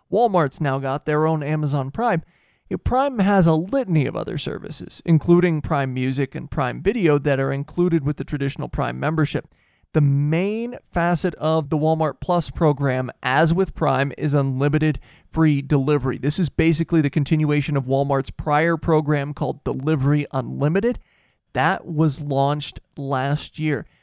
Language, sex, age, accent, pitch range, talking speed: English, male, 30-49, American, 140-170 Hz, 150 wpm